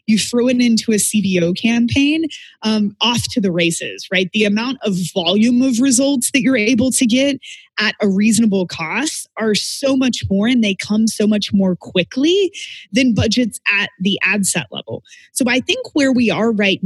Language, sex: English, female